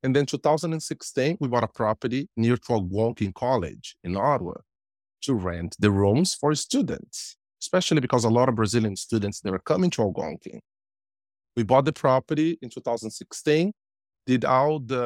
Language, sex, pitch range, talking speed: English, male, 100-155 Hz, 145 wpm